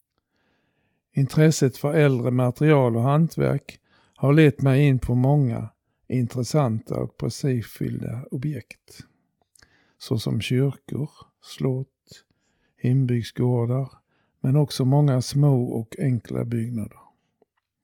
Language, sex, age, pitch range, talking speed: Swedish, male, 50-69, 120-140 Hz, 90 wpm